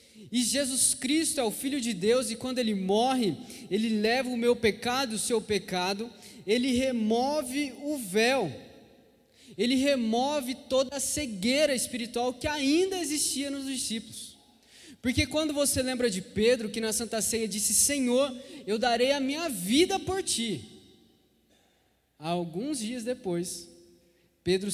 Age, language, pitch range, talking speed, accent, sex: 20-39, Portuguese, 210-275 Hz, 145 wpm, Brazilian, male